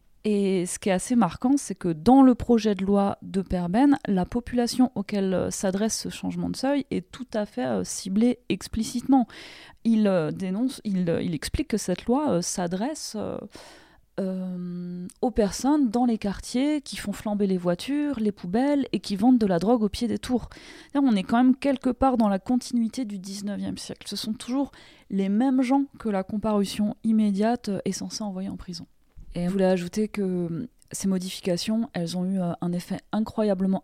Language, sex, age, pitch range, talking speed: French, female, 30-49, 185-235 Hz, 180 wpm